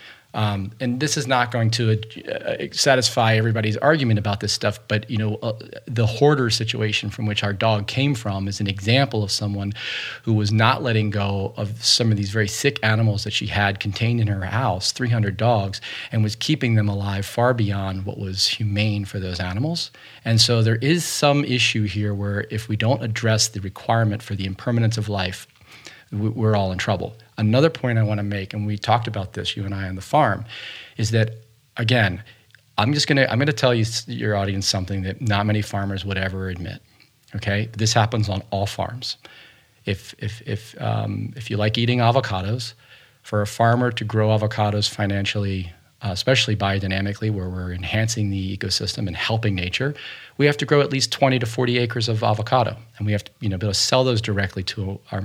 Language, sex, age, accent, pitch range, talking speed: English, male, 40-59, American, 100-120 Hz, 200 wpm